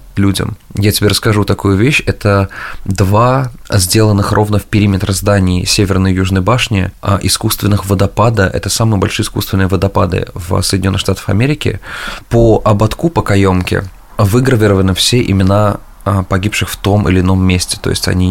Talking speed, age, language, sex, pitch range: 145 wpm, 20-39, Russian, male, 95-110 Hz